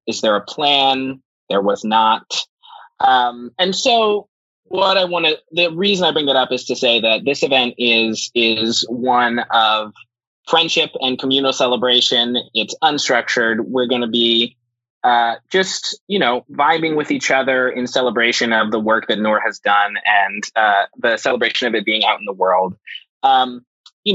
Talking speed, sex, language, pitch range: 175 wpm, male, English, 115-140 Hz